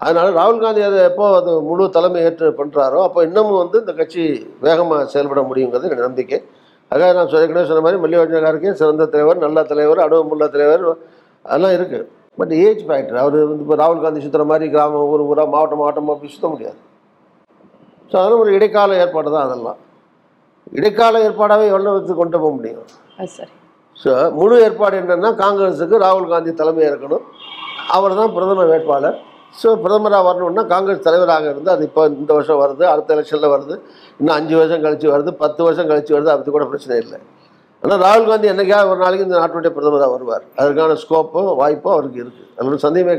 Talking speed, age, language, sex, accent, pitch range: 170 wpm, 60-79, Tamil, male, native, 150-185 Hz